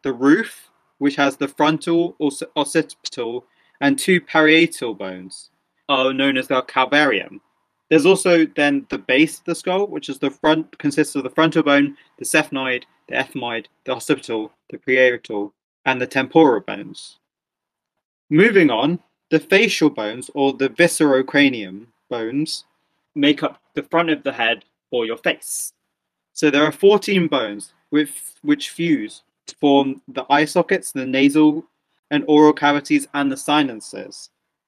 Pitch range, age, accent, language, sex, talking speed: 130-160 Hz, 20-39, British, English, male, 150 wpm